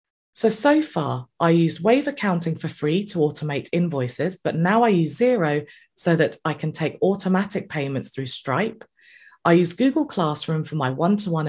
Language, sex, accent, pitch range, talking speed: English, female, British, 145-195 Hz, 170 wpm